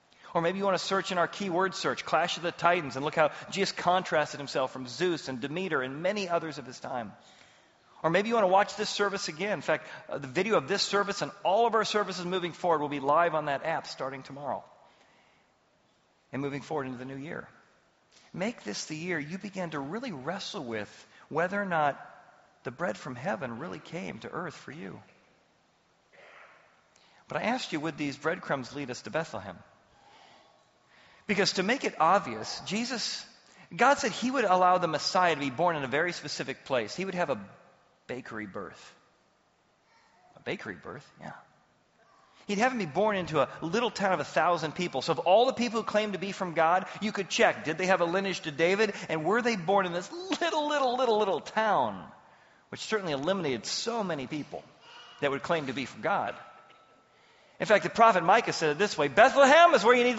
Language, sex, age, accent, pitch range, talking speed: English, male, 40-59, American, 155-205 Hz, 205 wpm